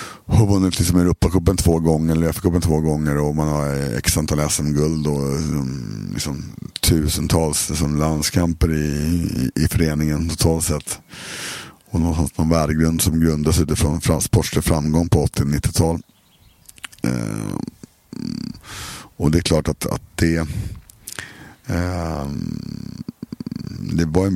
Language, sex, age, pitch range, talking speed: Swedish, male, 60-79, 75-85 Hz, 125 wpm